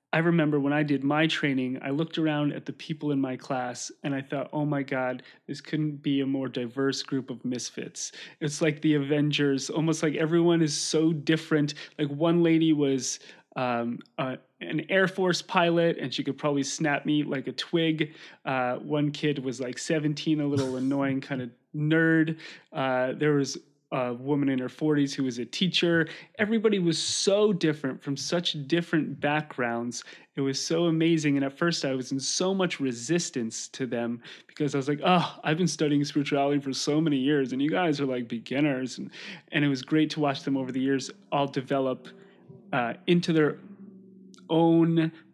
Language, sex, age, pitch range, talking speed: English, male, 30-49, 135-160 Hz, 190 wpm